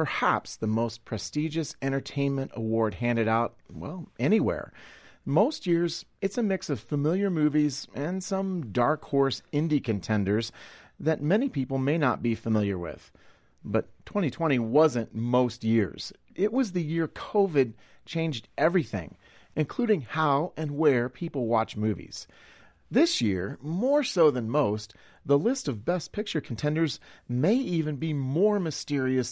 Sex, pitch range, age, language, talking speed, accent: male, 115-175 Hz, 40-59, English, 140 wpm, American